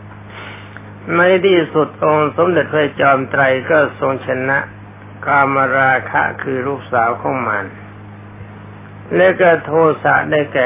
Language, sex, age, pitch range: Thai, male, 60-79, 105-135 Hz